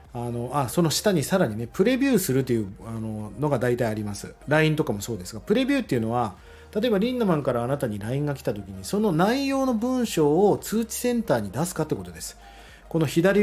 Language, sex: Japanese, male